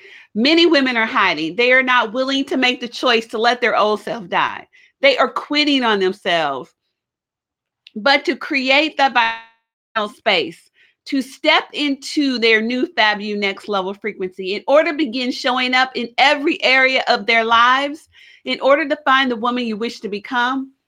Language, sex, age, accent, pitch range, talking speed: English, female, 40-59, American, 225-280 Hz, 170 wpm